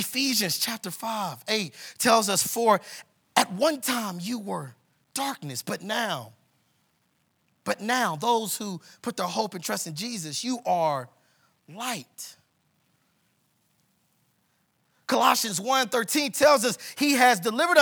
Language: English